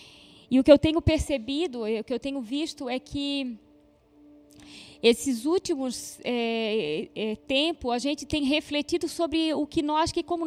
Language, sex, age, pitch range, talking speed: Portuguese, female, 20-39, 210-315 Hz, 150 wpm